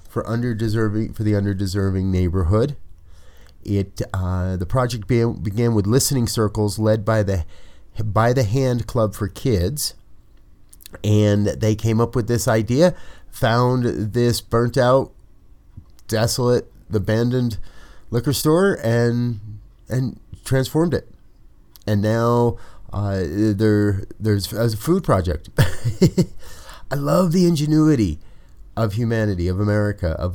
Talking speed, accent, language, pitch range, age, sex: 115 wpm, American, English, 90-120 Hz, 30-49, male